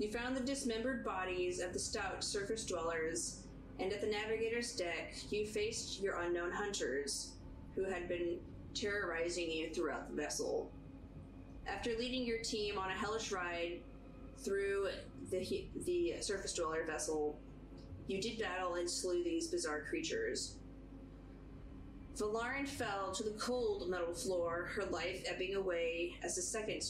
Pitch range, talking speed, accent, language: 170-230 Hz, 145 wpm, American, English